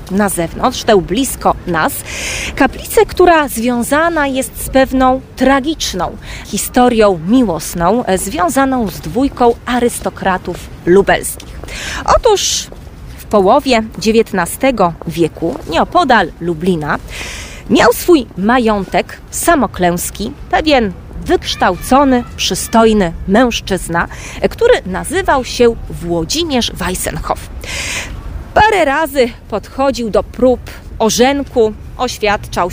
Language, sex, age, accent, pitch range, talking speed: Polish, female, 30-49, native, 190-270 Hz, 85 wpm